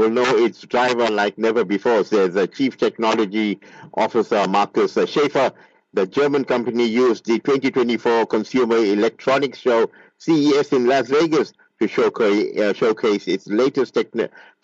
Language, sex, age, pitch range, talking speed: English, male, 50-69, 105-145 Hz, 140 wpm